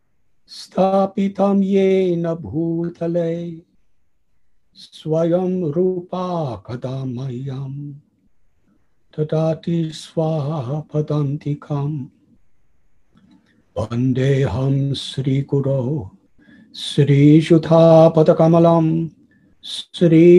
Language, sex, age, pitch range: English, male, 60-79, 140-185 Hz